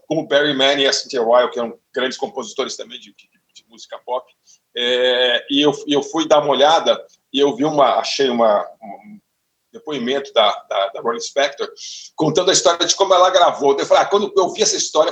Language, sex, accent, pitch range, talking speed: Portuguese, male, Brazilian, 145-220 Hz, 200 wpm